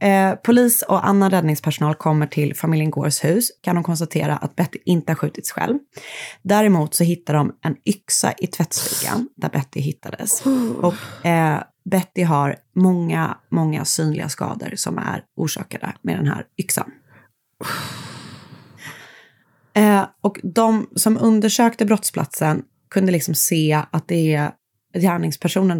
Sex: female